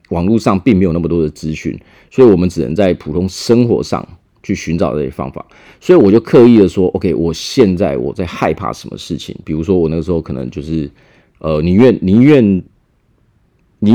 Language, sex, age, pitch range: Chinese, male, 30-49, 85-105 Hz